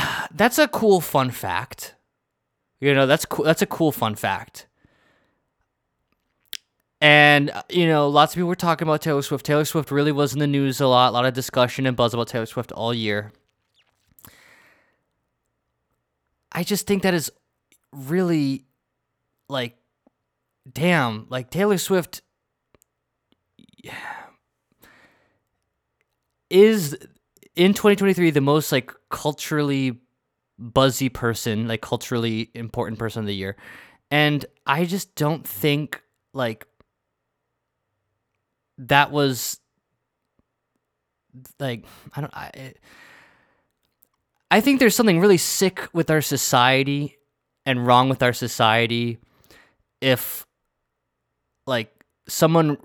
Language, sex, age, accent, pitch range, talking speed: English, male, 20-39, American, 115-150 Hz, 115 wpm